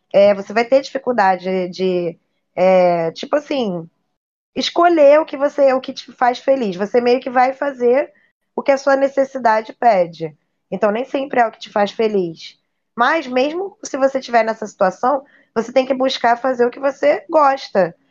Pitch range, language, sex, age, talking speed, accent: 205-265 Hz, Portuguese, female, 20-39, 170 wpm, Brazilian